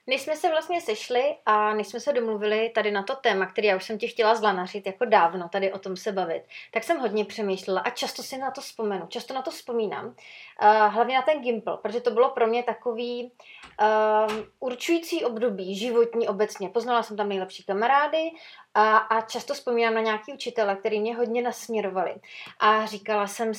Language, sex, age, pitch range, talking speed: Czech, female, 30-49, 215-250 Hz, 195 wpm